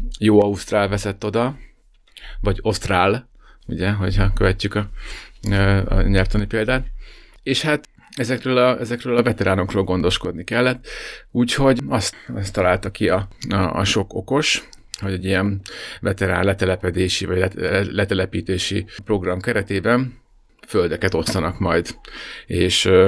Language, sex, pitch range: Hungarian, male, 95-110 Hz